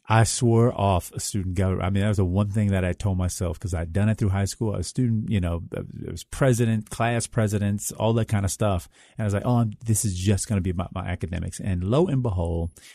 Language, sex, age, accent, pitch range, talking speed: English, male, 40-59, American, 95-130 Hz, 270 wpm